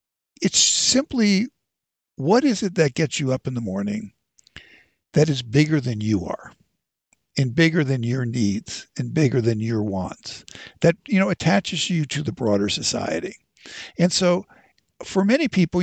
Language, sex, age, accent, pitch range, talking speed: English, male, 60-79, American, 125-190 Hz, 160 wpm